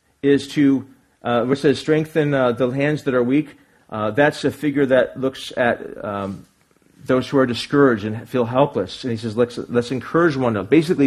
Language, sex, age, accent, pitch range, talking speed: English, male, 40-59, American, 125-160 Hz, 195 wpm